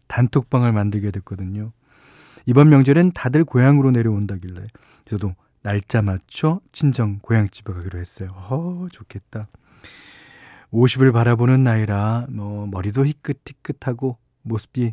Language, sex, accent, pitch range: Korean, male, native, 105-150 Hz